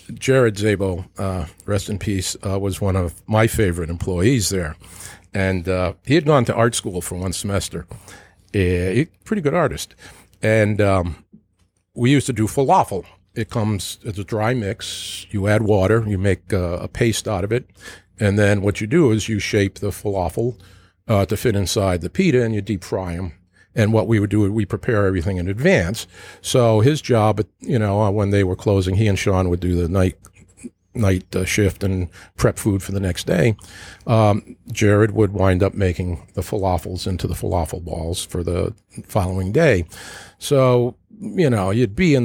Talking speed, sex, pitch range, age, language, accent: 190 wpm, male, 95-110 Hz, 50-69, English, American